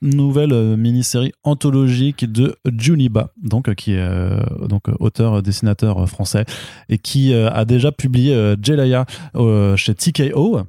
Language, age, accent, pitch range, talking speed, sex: French, 20-39, French, 105-120 Hz, 120 wpm, male